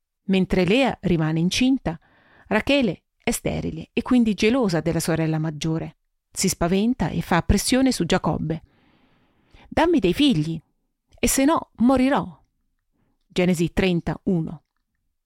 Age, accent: 40-59, native